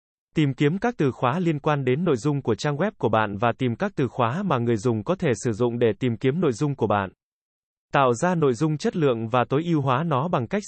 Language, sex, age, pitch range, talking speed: Vietnamese, male, 20-39, 125-165 Hz, 265 wpm